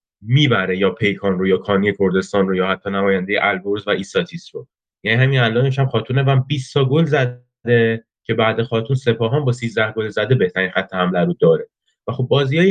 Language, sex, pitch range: Persian, male, 115-150 Hz